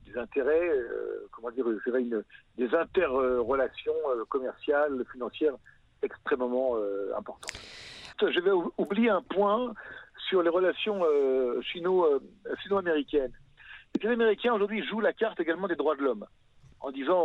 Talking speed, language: 125 wpm, French